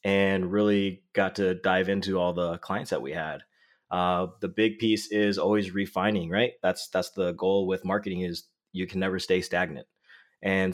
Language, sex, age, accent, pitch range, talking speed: English, male, 30-49, American, 90-100 Hz, 185 wpm